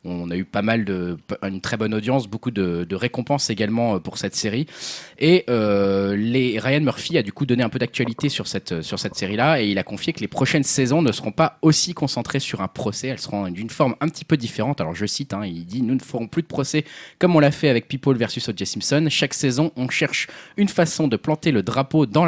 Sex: male